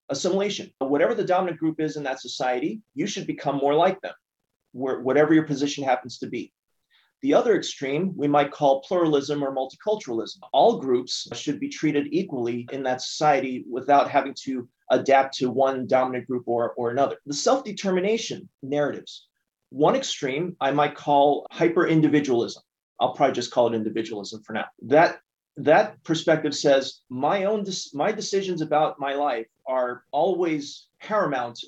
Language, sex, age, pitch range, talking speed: English, male, 30-49, 130-155 Hz, 150 wpm